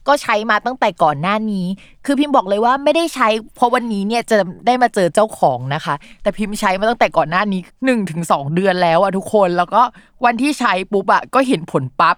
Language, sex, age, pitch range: Thai, female, 20-39, 180-240 Hz